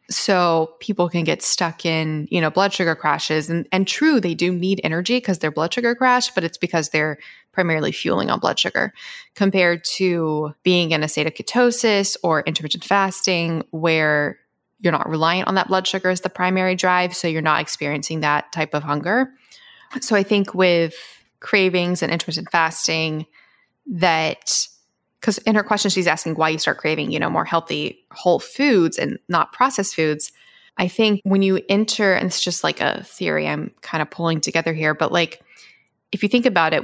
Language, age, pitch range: English, 20-39, 160-195 Hz